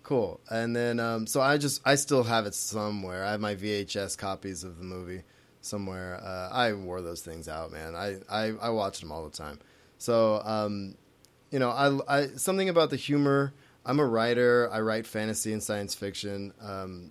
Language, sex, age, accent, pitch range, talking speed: English, male, 20-39, American, 95-115 Hz, 190 wpm